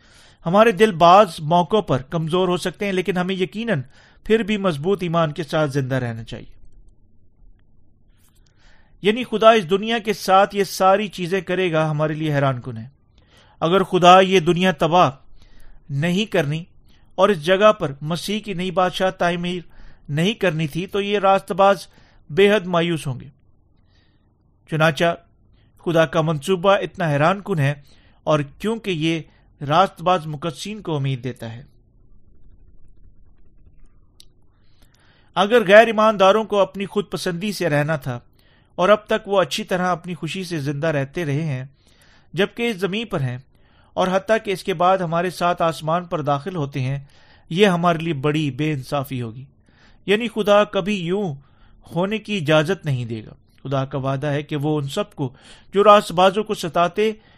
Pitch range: 130-195 Hz